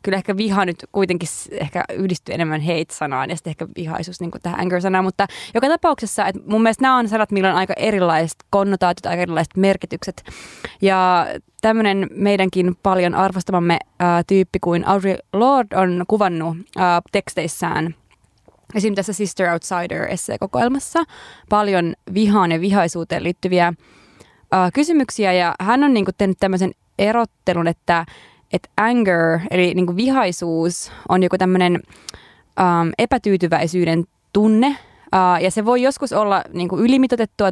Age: 20-39